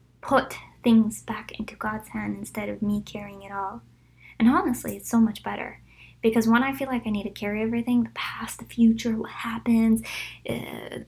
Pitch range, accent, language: 205-255 Hz, American, English